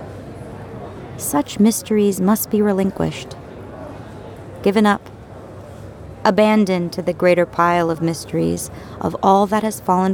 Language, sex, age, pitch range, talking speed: English, female, 30-49, 120-195 Hz, 110 wpm